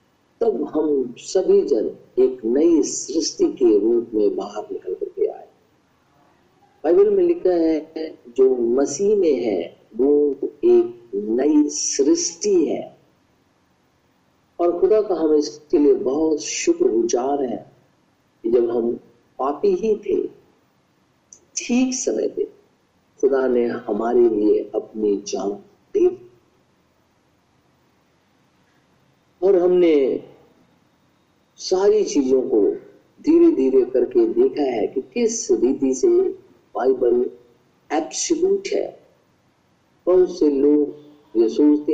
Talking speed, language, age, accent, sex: 100 wpm, Hindi, 50-69, native, male